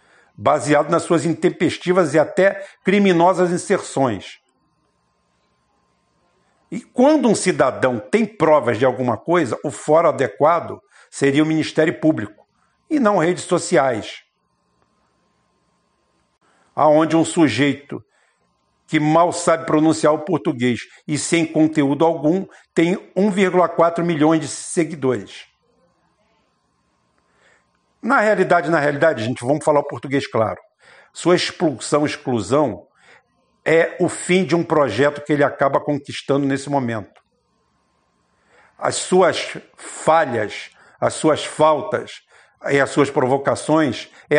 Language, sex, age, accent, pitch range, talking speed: Portuguese, male, 60-79, Brazilian, 140-170 Hz, 110 wpm